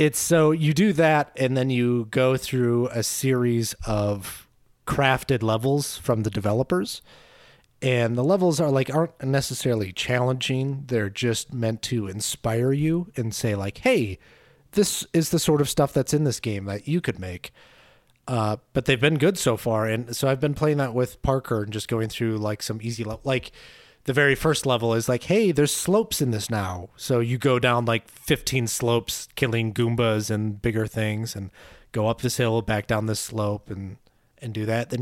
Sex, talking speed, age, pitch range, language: male, 195 wpm, 30-49, 110-140 Hz, English